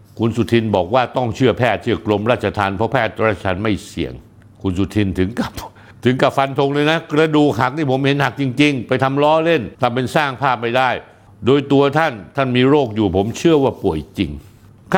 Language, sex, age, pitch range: Thai, male, 60-79, 100-135 Hz